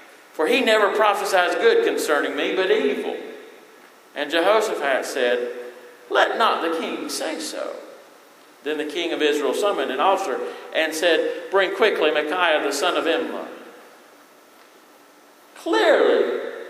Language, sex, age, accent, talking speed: English, male, 50-69, American, 130 wpm